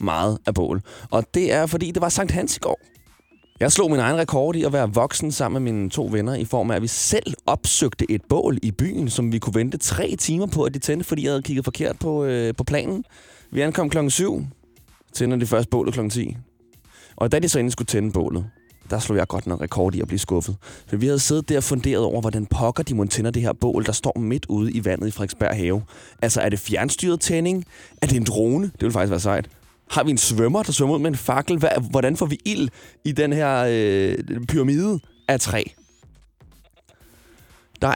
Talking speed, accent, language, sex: 225 wpm, native, Danish, male